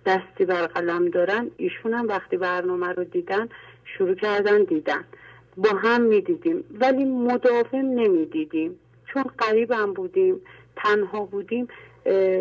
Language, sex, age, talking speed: English, female, 40-59, 110 wpm